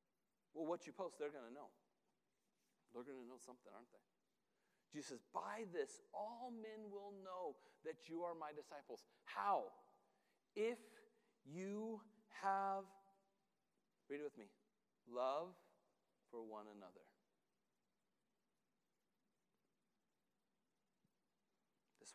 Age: 40-59